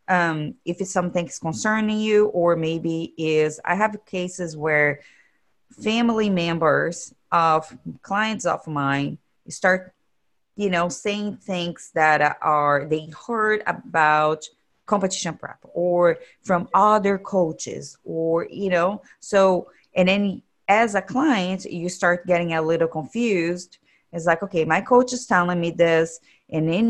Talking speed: 140 wpm